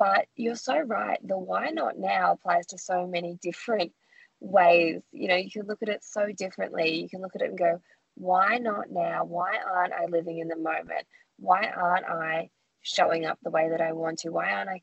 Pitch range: 170-210 Hz